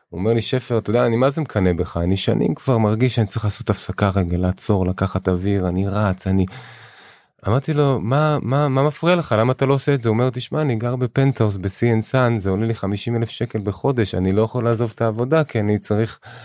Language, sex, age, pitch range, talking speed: Hebrew, male, 20-39, 115-155 Hz, 225 wpm